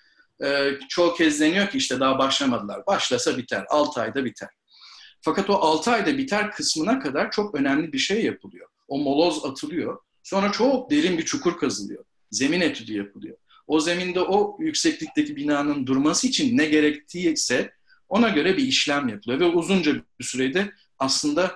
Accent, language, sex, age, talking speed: native, Turkish, male, 50-69, 155 wpm